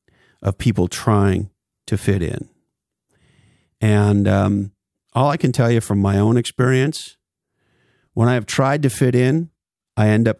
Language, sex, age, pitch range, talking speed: English, male, 50-69, 100-120 Hz, 155 wpm